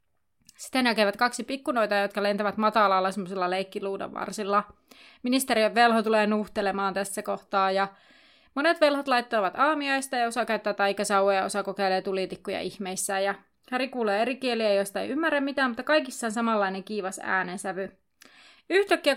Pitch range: 195-240 Hz